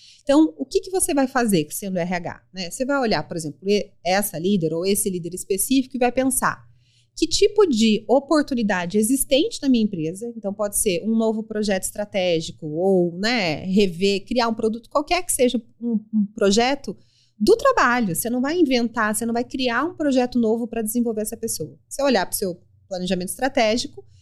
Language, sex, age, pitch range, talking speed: Portuguese, female, 30-49, 180-245 Hz, 185 wpm